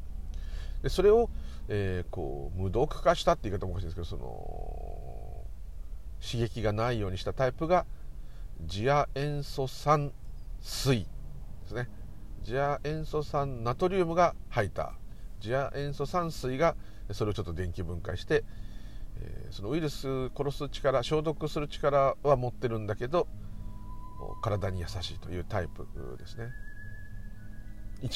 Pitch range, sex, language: 95-125 Hz, male, Japanese